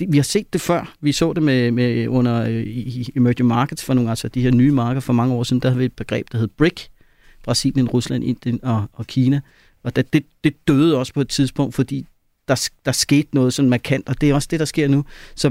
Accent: native